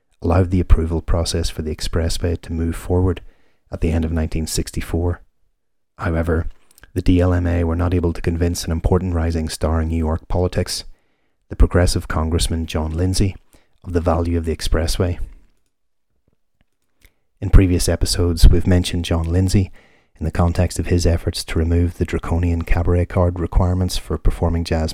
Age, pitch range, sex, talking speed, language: 30-49, 80-90 Hz, male, 155 wpm, English